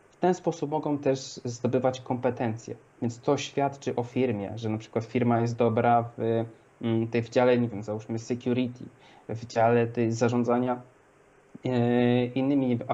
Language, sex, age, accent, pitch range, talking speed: Polish, male, 20-39, native, 115-130 Hz, 145 wpm